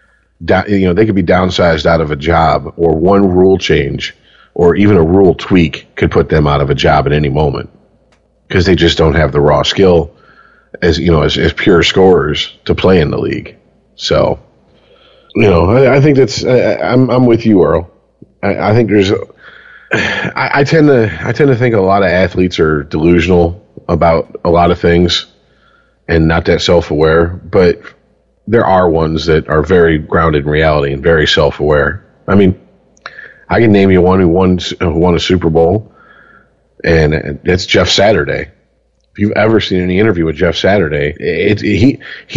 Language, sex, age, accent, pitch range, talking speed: English, male, 40-59, American, 80-100 Hz, 185 wpm